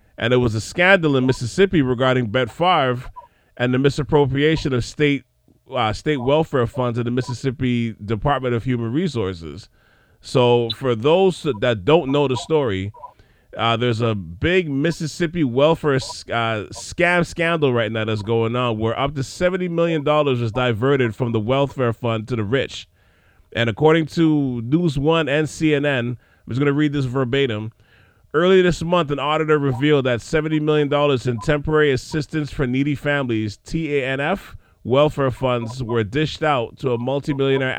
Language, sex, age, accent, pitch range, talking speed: English, male, 30-49, American, 120-155 Hz, 160 wpm